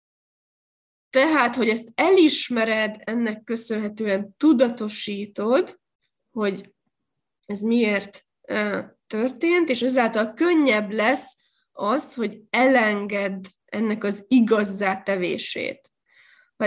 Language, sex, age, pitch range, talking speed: Hungarian, female, 20-39, 205-245 Hz, 85 wpm